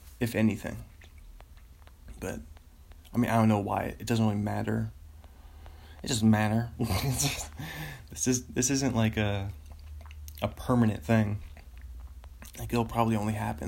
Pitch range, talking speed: 80-130 Hz, 140 wpm